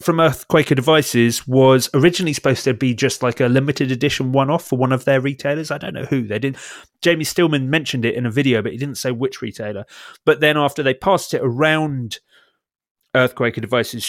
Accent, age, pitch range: British, 30-49, 115-145 Hz